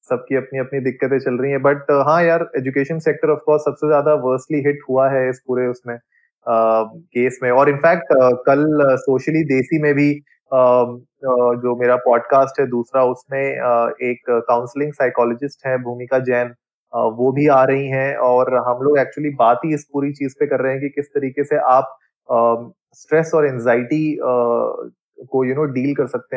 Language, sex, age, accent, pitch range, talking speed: Hindi, male, 20-39, native, 125-145 Hz, 190 wpm